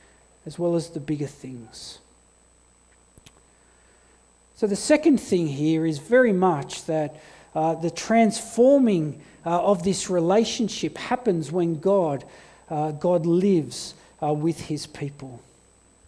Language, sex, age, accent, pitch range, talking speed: English, male, 50-69, Australian, 150-195 Hz, 120 wpm